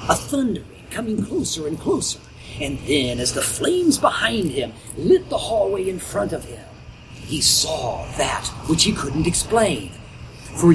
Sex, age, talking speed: male, 40-59, 155 wpm